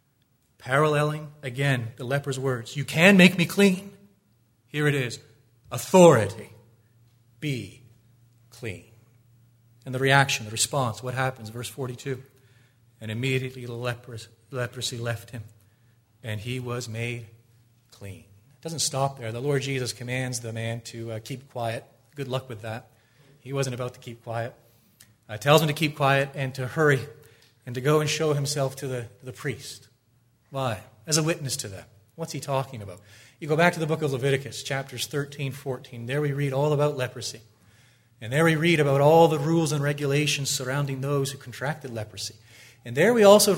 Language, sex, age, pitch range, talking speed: English, male, 30-49, 115-145 Hz, 170 wpm